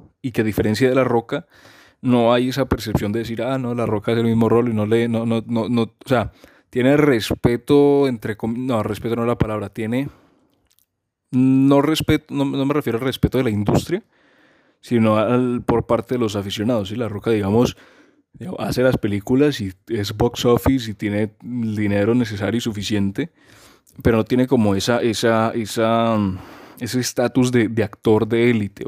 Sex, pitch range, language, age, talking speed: male, 105-125 Hz, Spanish, 20-39, 190 wpm